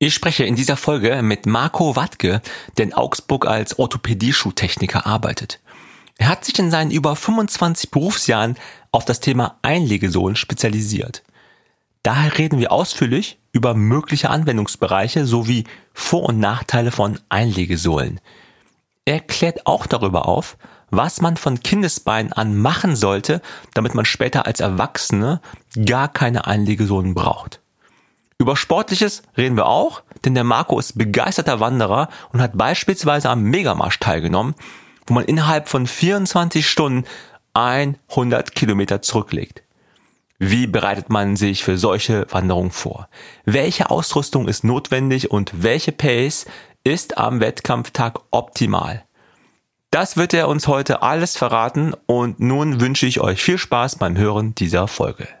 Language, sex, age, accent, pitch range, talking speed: German, male, 40-59, German, 110-155 Hz, 135 wpm